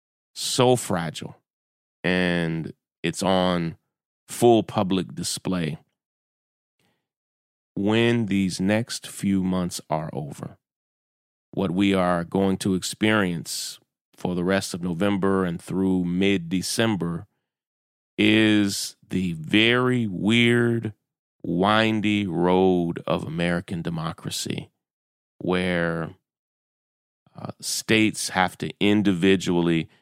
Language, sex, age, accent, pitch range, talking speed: English, male, 30-49, American, 85-110 Hz, 90 wpm